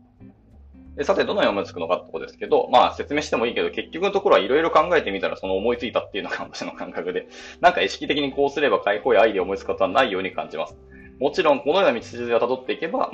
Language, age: Japanese, 20-39